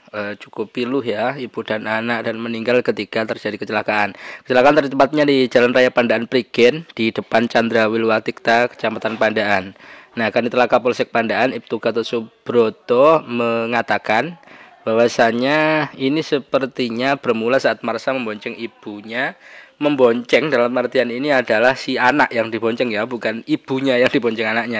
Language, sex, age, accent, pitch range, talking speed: Indonesian, male, 20-39, native, 110-130 Hz, 135 wpm